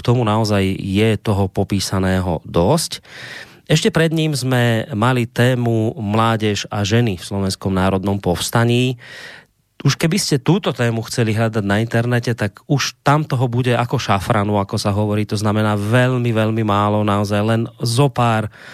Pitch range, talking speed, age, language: 105-130 Hz, 155 wpm, 30-49, Slovak